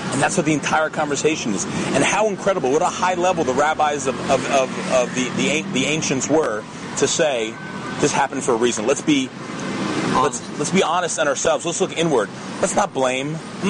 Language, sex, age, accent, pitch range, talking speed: English, male, 40-59, American, 135-180 Hz, 205 wpm